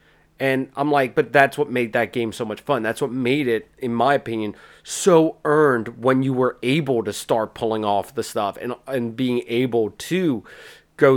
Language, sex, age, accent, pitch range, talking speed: English, male, 30-49, American, 120-160 Hz, 200 wpm